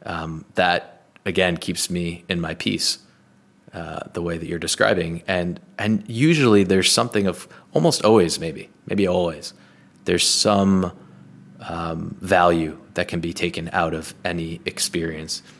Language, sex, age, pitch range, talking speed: English, male, 20-39, 80-90 Hz, 140 wpm